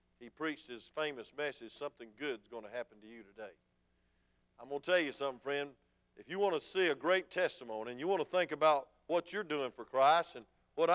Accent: American